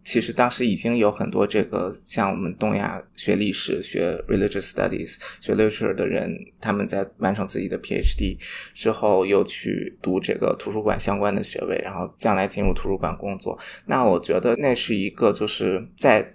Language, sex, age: Chinese, male, 20-39